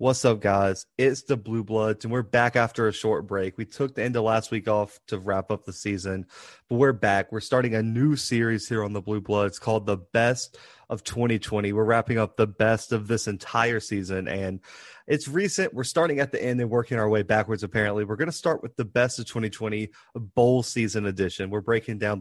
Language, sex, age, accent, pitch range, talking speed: English, male, 30-49, American, 105-125 Hz, 225 wpm